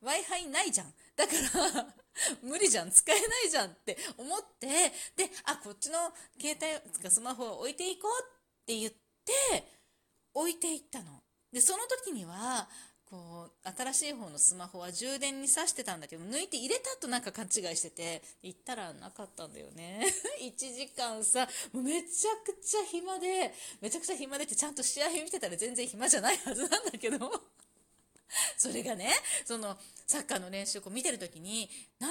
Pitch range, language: 225-365 Hz, Japanese